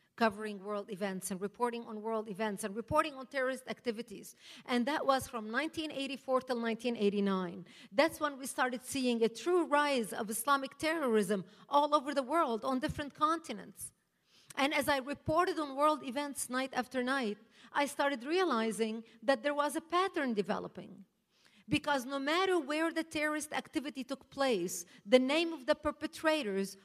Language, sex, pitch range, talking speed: English, female, 225-295 Hz, 160 wpm